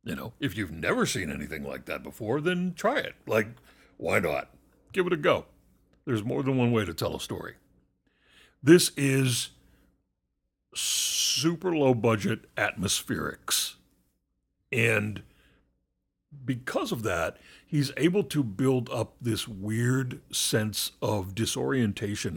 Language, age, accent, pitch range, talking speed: English, 60-79, American, 100-140 Hz, 130 wpm